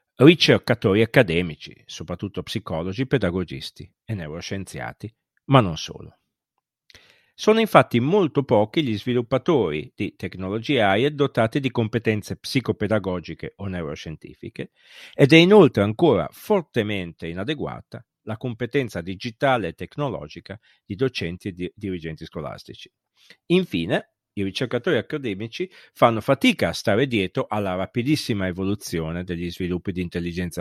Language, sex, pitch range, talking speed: Italian, male, 95-130 Hz, 115 wpm